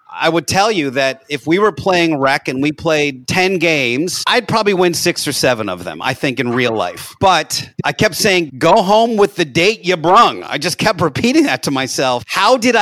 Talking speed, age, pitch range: 225 wpm, 40-59, 135-180 Hz